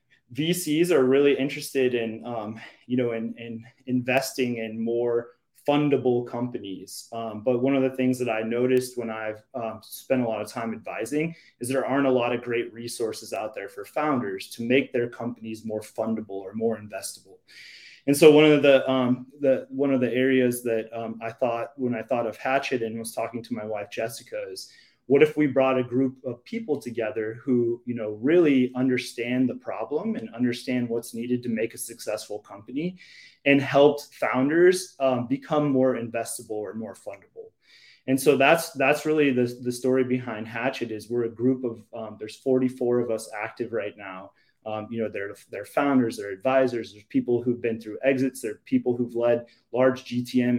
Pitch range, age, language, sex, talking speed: 115-135 Hz, 30-49, English, male, 190 wpm